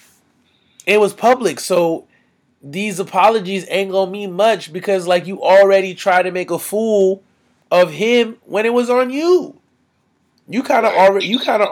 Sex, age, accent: male, 20-39, American